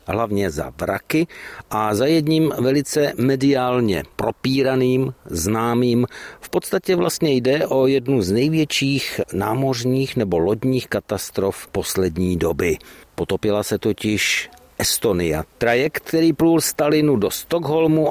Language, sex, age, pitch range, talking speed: Czech, male, 50-69, 105-130 Hz, 115 wpm